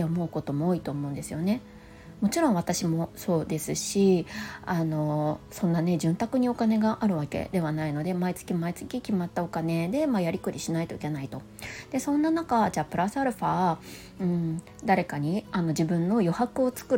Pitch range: 160-250 Hz